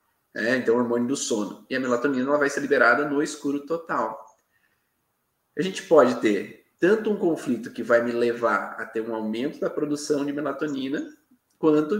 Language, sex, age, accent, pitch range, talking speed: Portuguese, male, 20-39, Brazilian, 135-215 Hz, 180 wpm